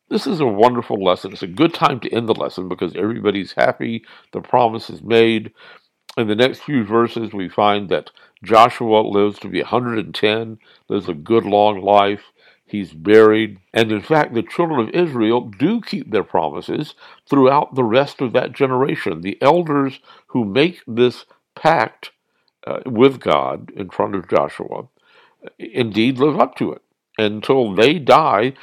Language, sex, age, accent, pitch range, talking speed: English, male, 60-79, American, 105-130 Hz, 165 wpm